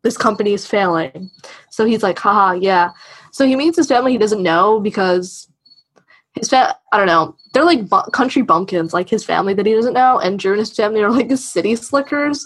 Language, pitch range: English, 185-240 Hz